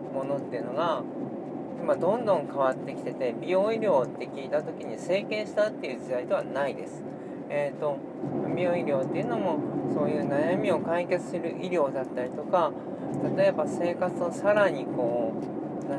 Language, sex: Japanese, male